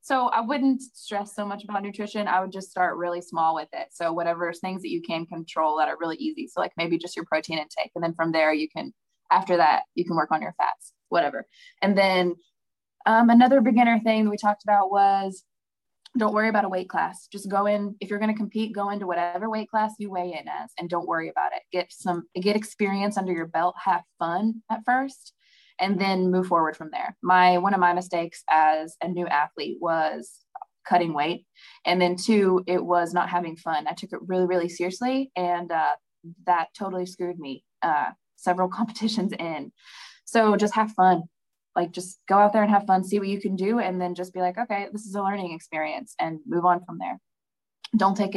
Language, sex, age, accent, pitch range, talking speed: English, female, 20-39, American, 175-215 Hz, 215 wpm